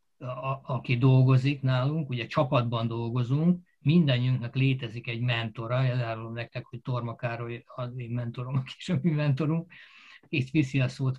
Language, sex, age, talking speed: Hungarian, male, 60-79, 145 wpm